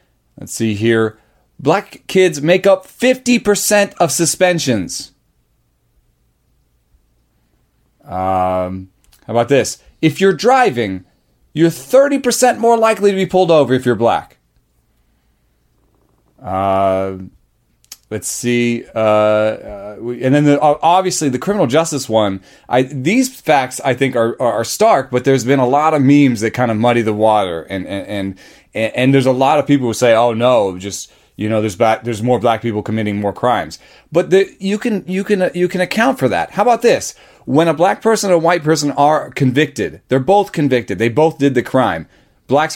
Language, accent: English, American